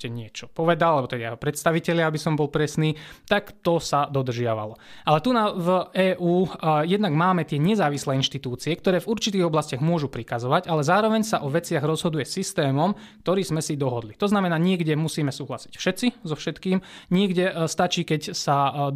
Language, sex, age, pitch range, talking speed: Slovak, male, 20-39, 140-175 Hz, 175 wpm